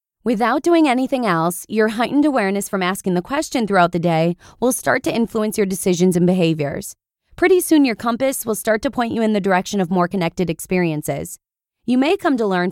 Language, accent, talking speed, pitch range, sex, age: English, American, 205 wpm, 180-245 Hz, female, 20-39